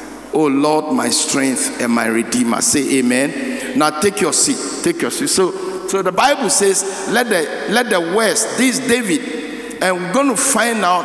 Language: English